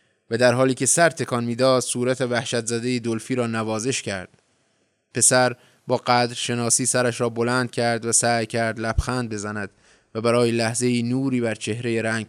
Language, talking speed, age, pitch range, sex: Persian, 165 wpm, 20-39, 110-125 Hz, male